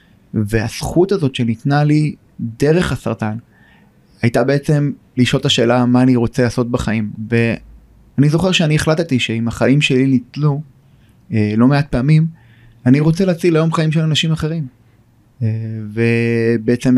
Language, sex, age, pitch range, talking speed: Hebrew, male, 30-49, 115-135 Hz, 125 wpm